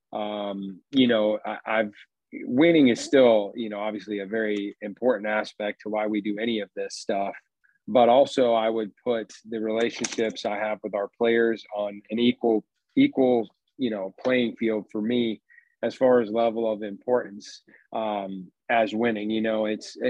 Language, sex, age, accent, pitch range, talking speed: English, male, 40-59, American, 105-125 Hz, 175 wpm